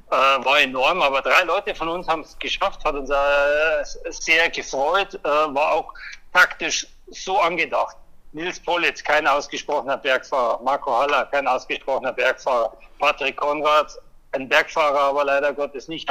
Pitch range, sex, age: 150-185 Hz, male, 60-79